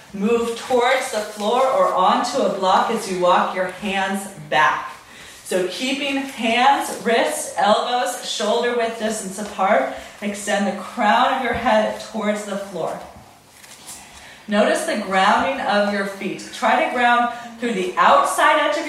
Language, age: English, 30-49